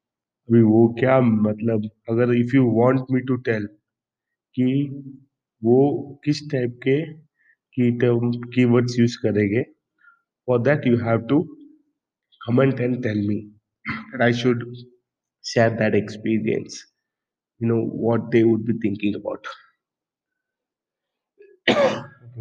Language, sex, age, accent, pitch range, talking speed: Hindi, male, 30-49, native, 105-120 Hz, 110 wpm